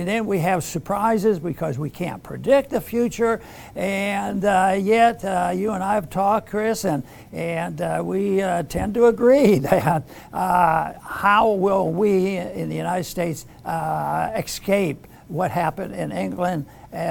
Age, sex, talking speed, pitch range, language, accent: 60-79, male, 155 wpm, 170-225 Hz, English, American